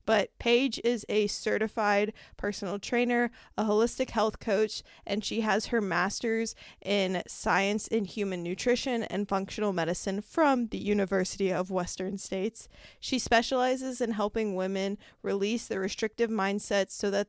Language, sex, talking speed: English, female, 140 wpm